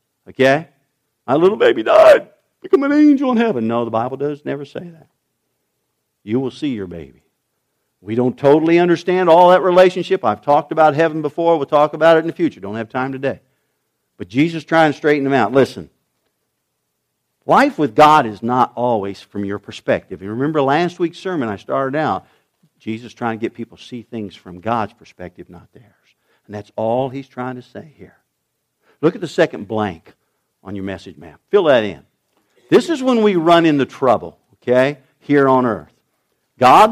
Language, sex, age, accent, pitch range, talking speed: English, male, 50-69, American, 120-190 Hz, 185 wpm